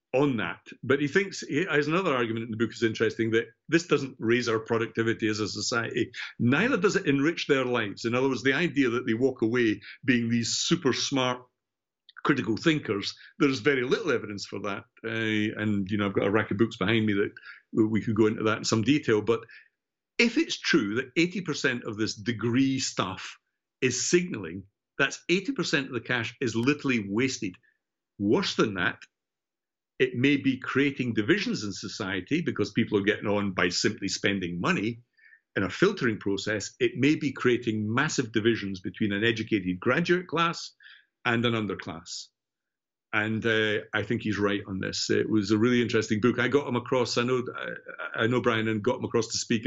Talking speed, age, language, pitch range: 190 wpm, 60-79, English, 110-135 Hz